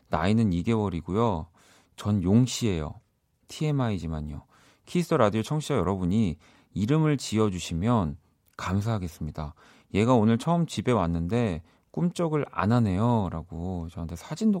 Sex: male